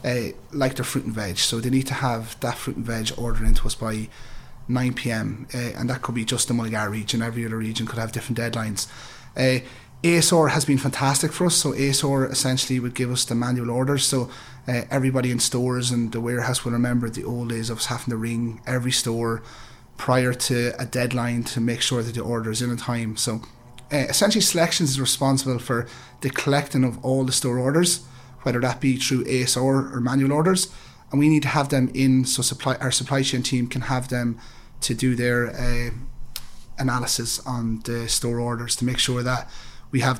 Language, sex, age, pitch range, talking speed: English, male, 30-49, 120-130 Hz, 205 wpm